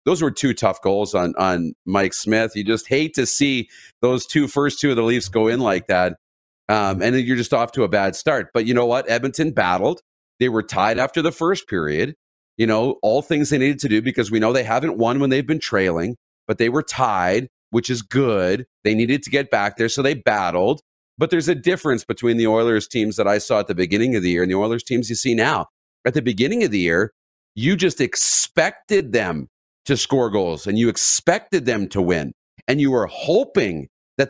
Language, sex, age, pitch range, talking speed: English, male, 40-59, 110-135 Hz, 225 wpm